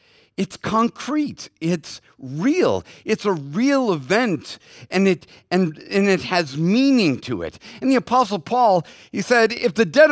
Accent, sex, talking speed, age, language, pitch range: American, male, 155 wpm, 50-69, English, 150-215 Hz